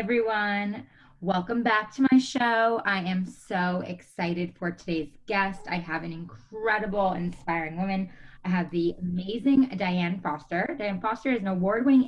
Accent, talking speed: American, 150 wpm